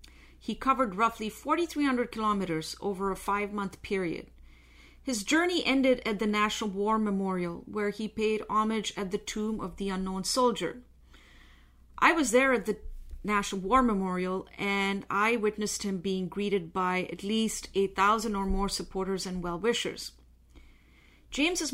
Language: English